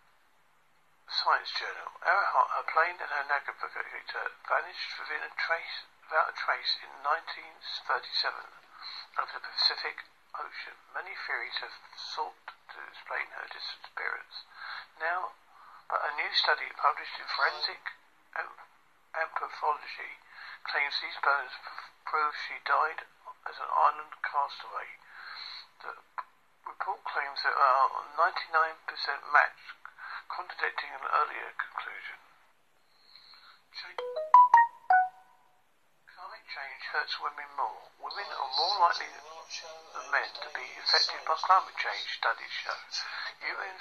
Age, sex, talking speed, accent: 50-69, male, 110 wpm, British